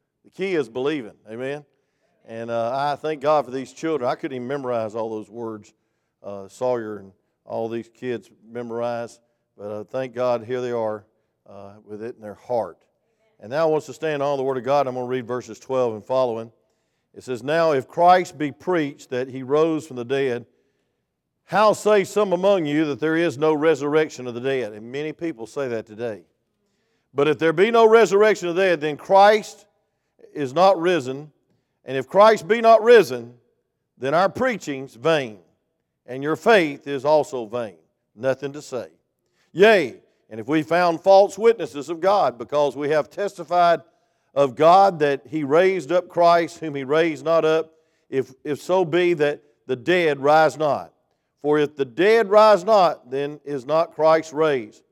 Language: English